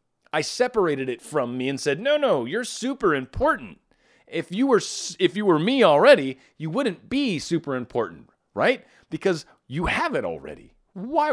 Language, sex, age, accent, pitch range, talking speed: English, male, 40-59, American, 140-195 Hz, 170 wpm